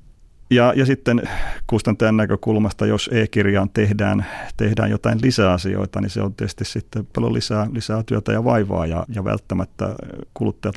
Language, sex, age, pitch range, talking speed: Finnish, male, 30-49, 95-110 Hz, 150 wpm